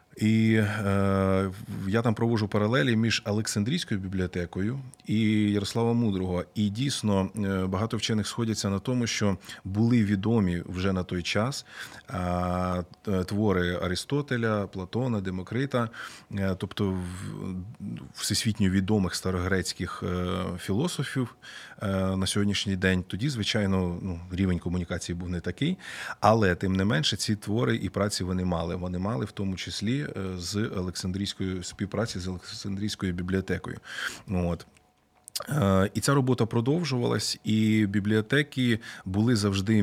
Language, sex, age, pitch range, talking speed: Ukrainian, male, 20-39, 90-110 Hz, 110 wpm